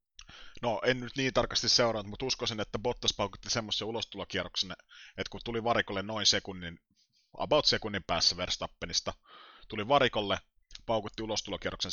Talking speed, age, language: 135 wpm, 30-49, Finnish